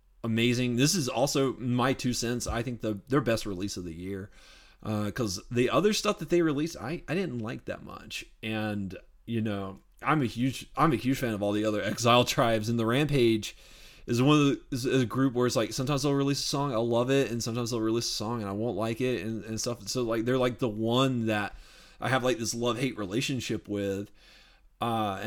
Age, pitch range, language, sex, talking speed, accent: 30-49, 100-125 Hz, English, male, 230 wpm, American